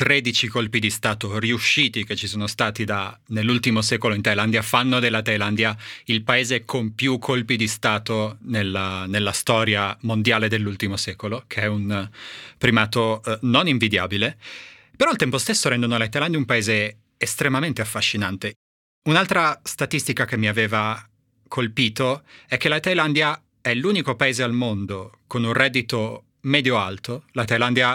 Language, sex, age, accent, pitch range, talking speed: Italian, male, 30-49, native, 110-130 Hz, 145 wpm